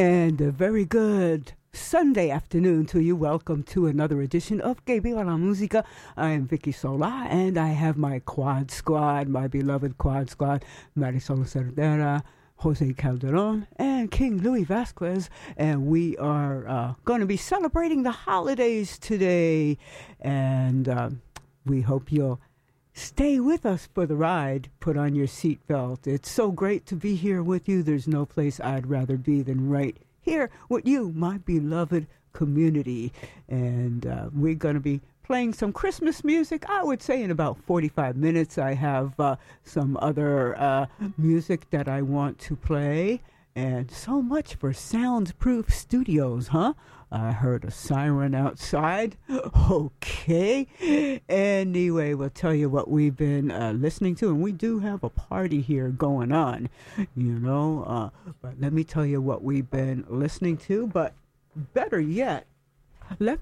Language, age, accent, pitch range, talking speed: English, 60-79, American, 135-190 Hz, 155 wpm